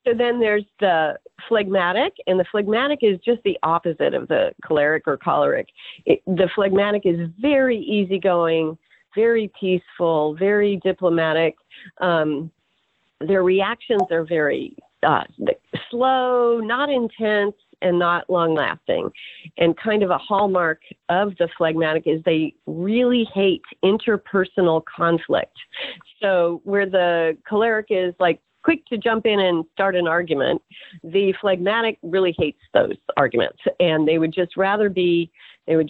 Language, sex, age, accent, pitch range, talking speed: English, female, 40-59, American, 165-215 Hz, 135 wpm